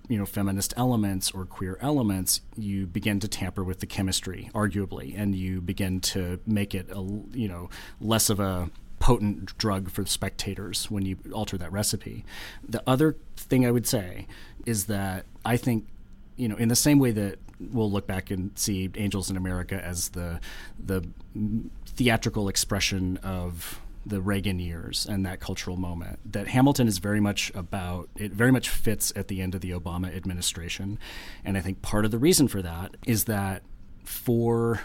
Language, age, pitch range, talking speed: English, 30-49, 95-110 Hz, 175 wpm